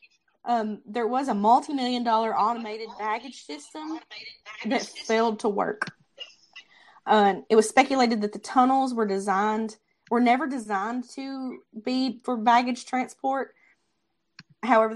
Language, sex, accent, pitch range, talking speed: English, female, American, 200-240 Hz, 125 wpm